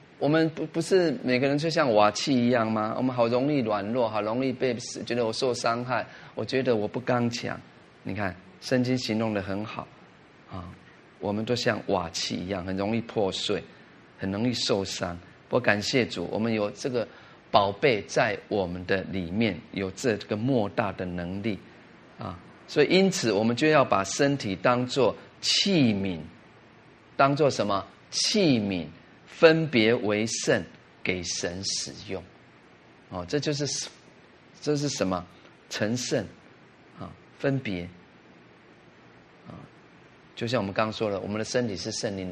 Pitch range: 95-125 Hz